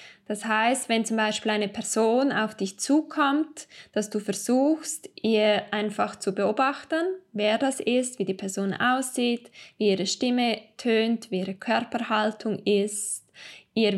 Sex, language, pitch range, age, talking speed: female, German, 210-240 Hz, 10-29, 140 wpm